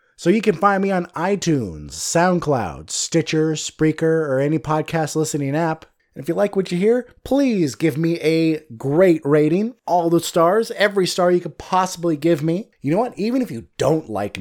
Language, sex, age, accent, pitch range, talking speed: English, male, 20-39, American, 145-180 Hz, 190 wpm